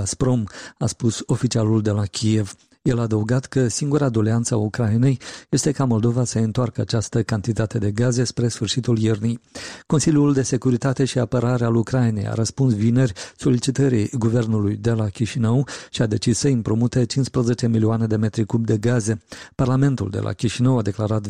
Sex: male